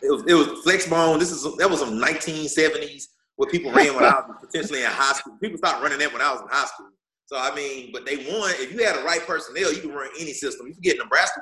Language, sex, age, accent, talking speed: English, male, 30-49, American, 275 wpm